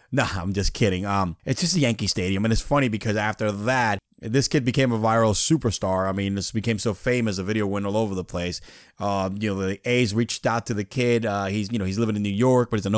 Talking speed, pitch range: 270 wpm, 100-130 Hz